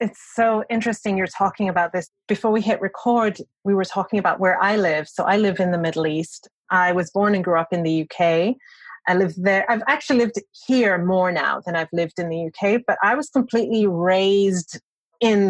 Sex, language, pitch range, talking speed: female, English, 180-230 Hz, 215 wpm